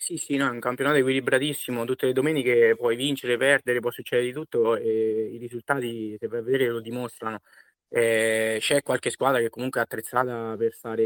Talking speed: 195 wpm